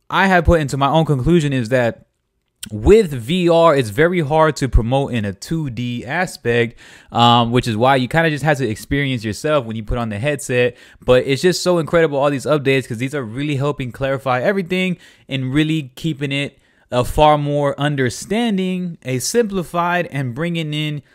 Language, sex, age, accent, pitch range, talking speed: English, male, 20-39, American, 130-165 Hz, 185 wpm